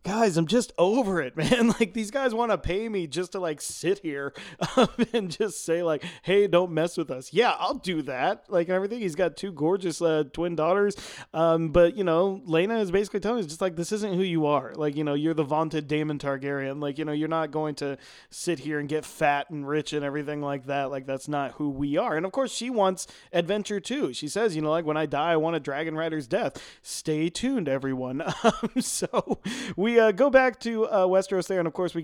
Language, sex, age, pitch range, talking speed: English, male, 30-49, 150-190 Hz, 235 wpm